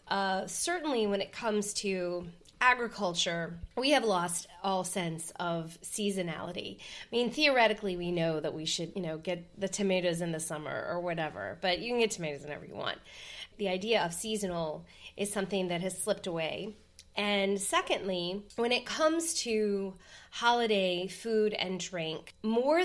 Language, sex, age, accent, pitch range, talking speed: English, female, 20-39, American, 185-230 Hz, 160 wpm